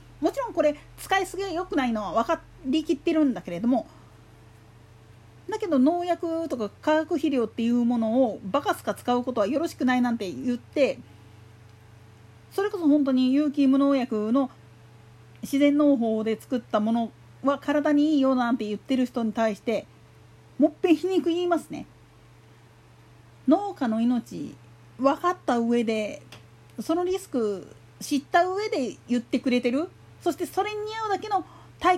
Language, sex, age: Japanese, female, 40-59